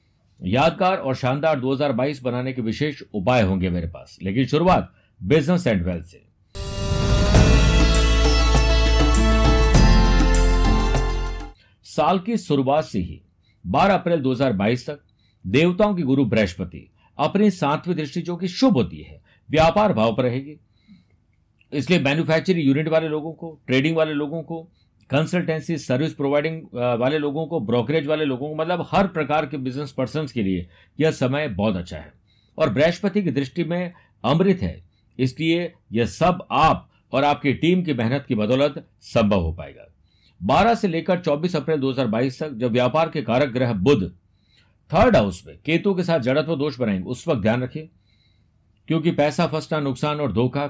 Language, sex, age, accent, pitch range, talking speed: Hindi, male, 50-69, native, 105-160 Hz, 150 wpm